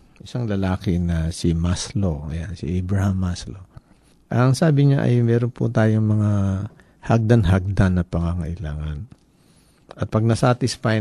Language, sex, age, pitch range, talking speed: Filipino, male, 50-69, 95-125 Hz, 120 wpm